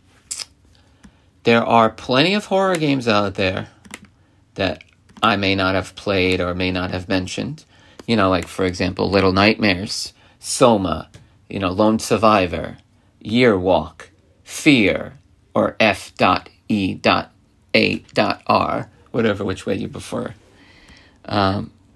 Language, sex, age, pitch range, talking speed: English, male, 40-59, 95-115 Hz, 115 wpm